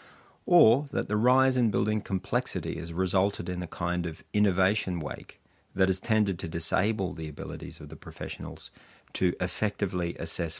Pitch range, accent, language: 85-110 Hz, Australian, English